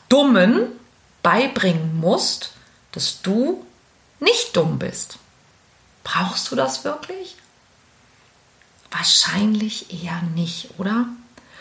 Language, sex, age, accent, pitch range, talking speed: German, female, 40-59, German, 185-245 Hz, 85 wpm